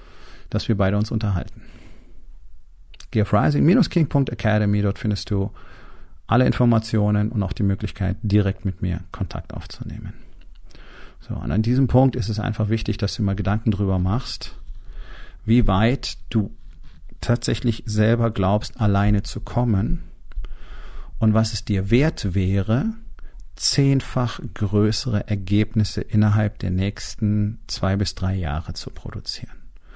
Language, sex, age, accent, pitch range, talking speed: German, male, 40-59, German, 95-115 Hz, 125 wpm